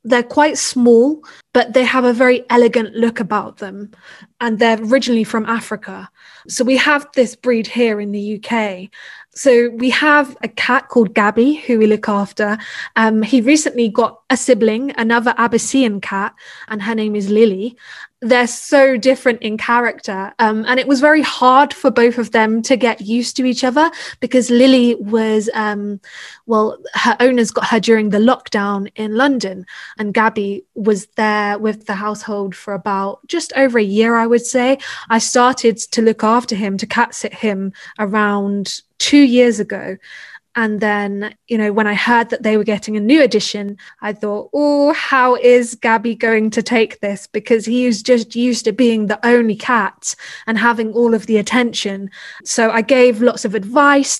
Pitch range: 215-245 Hz